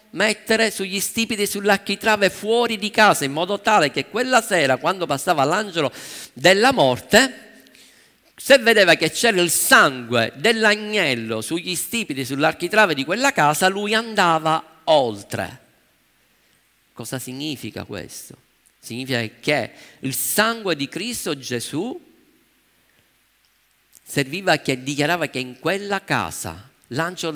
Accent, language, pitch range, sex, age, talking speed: native, Italian, 120-200 Hz, male, 50-69, 115 wpm